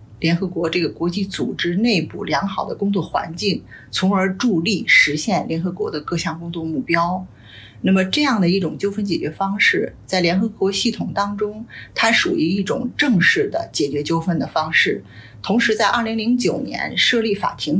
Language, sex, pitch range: Chinese, female, 160-210 Hz